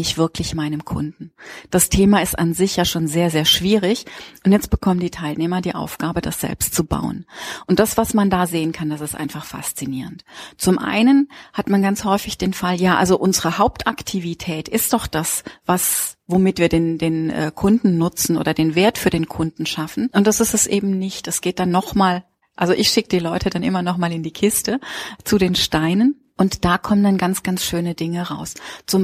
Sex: female